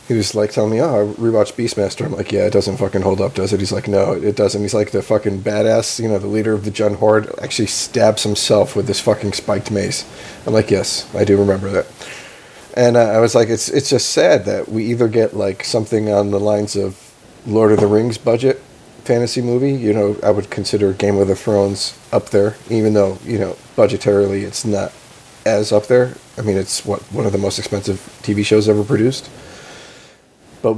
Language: English